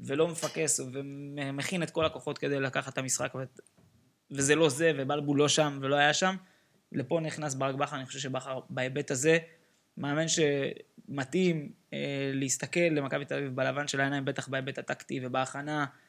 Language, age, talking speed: Hebrew, 20-39, 155 wpm